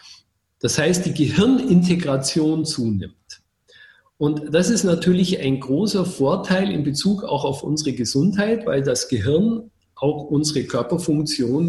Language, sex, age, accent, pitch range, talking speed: German, male, 50-69, German, 135-190 Hz, 125 wpm